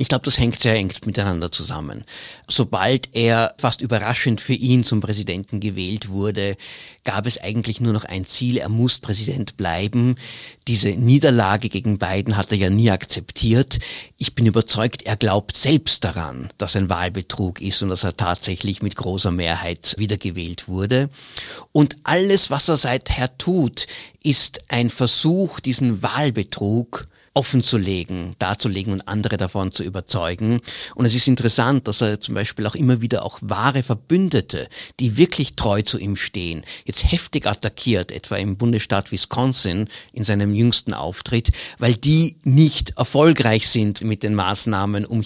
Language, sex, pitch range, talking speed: German, male, 100-125 Hz, 155 wpm